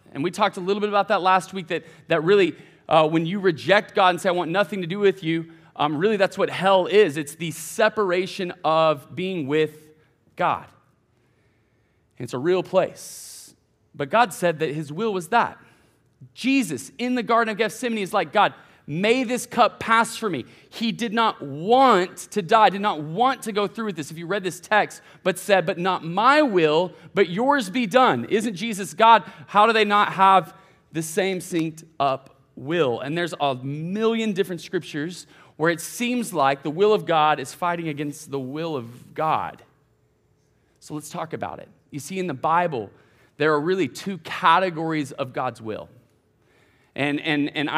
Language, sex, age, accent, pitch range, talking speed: English, male, 30-49, American, 155-205 Hz, 190 wpm